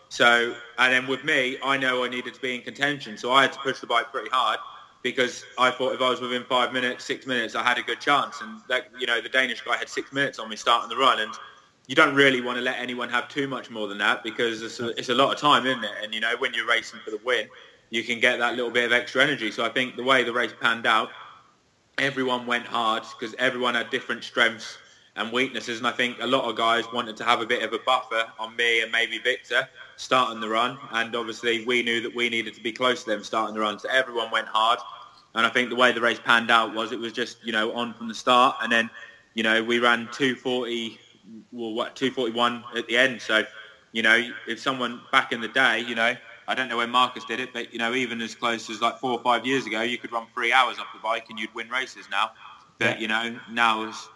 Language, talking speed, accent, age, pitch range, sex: Danish, 260 wpm, British, 20-39, 115-125 Hz, male